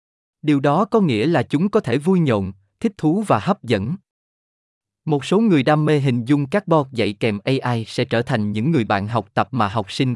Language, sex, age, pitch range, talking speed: Vietnamese, male, 20-39, 110-160 Hz, 225 wpm